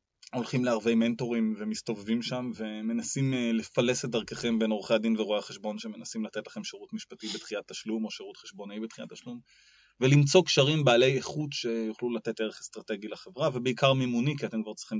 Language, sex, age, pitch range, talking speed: Hebrew, male, 20-39, 110-140 Hz, 165 wpm